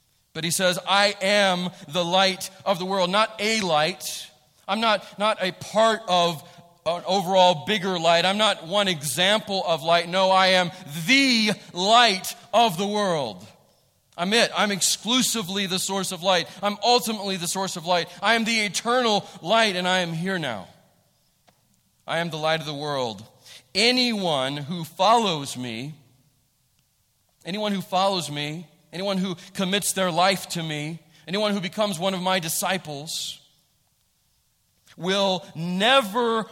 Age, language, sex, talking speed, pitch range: 40-59, English, male, 150 wpm, 165-205 Hz